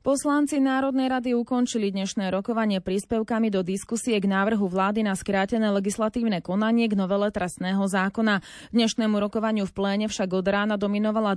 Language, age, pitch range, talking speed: Slovak, 30-49, 195-235 Hz, 150 wpm